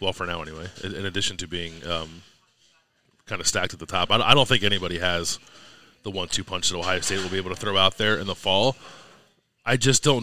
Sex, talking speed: male, 230 wpm